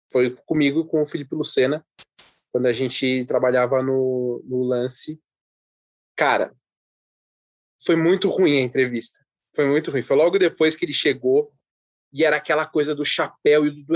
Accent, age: Brazilian, 20-39